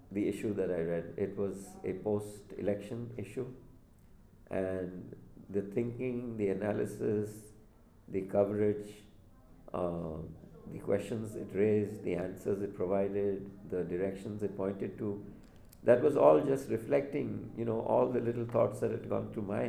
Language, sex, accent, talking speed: English, male, Indian, 145 wpm